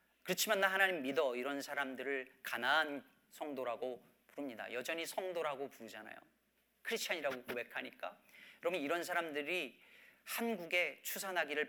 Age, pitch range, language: 40-59, 135-210 Hz, Korean